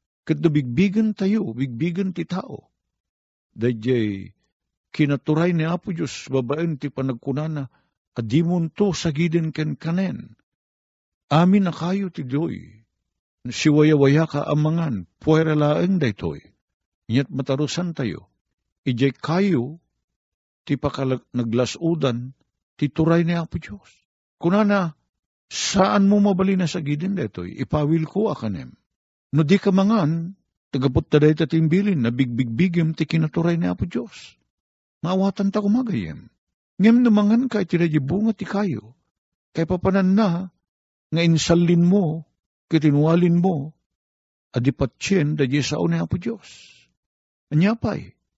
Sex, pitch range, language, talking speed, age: male, 125-175 Hz, Filipino, 120 wpm, 50-69